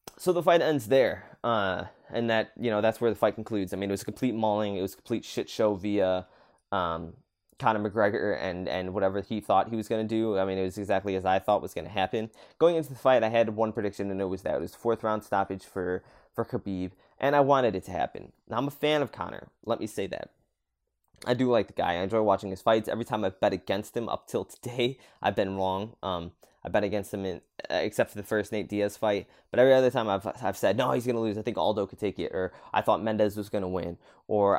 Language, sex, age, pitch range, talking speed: English, male, 20-39, 95-115 Hz, 255 wpm